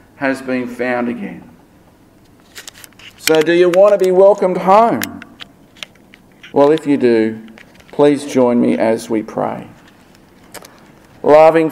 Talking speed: 120 wpm